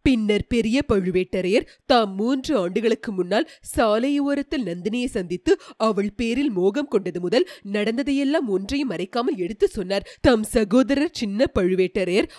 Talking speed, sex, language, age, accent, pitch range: 115 wpm, female, Tamil, 30-49, native, 205-280 Hz